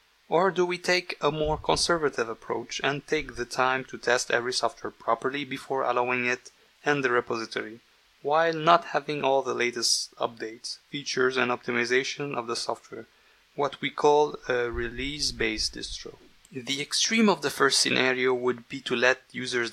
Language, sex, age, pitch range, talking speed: English, male, 30-49, 120-145 Hz, 160 wpm